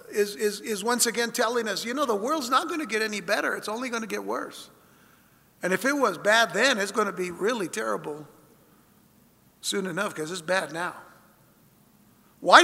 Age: 60-79